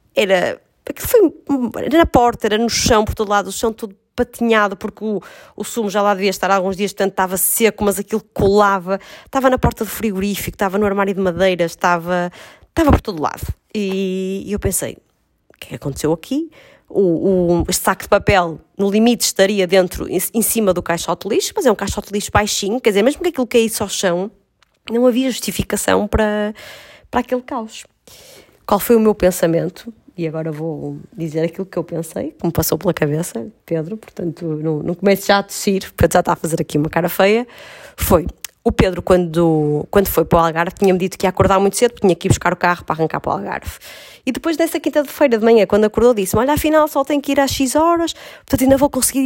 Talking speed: 215 wpm